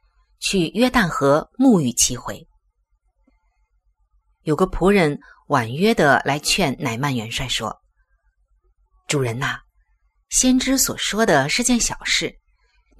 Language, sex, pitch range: Chinese, female, 140-230 Hz